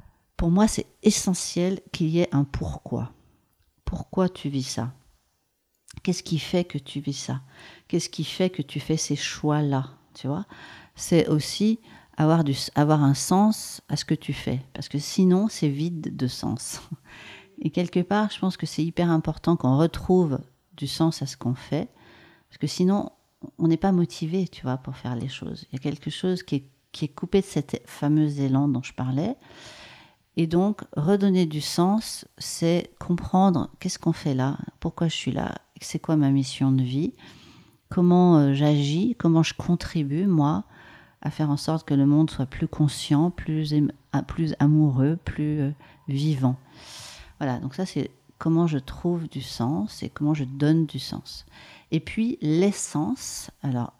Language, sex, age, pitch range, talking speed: French, female, 50-69, 140-175 Hz, 180 wpm